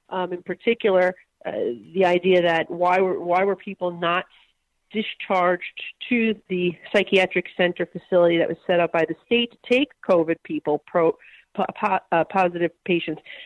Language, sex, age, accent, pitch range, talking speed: English, female, 40-59, American, 175-215 Hz, 160 wpm